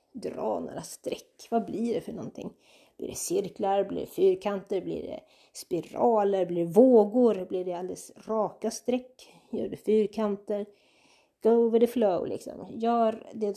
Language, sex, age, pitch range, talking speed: Swedish, female, 30-49, 195-240 Hz, 155 wpm